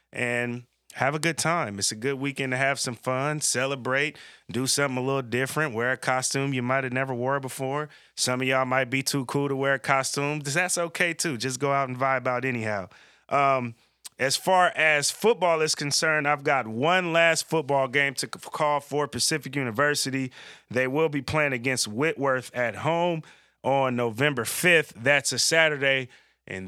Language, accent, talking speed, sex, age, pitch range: English, American, 185 wpm, male, 30-49, 120-140 Hz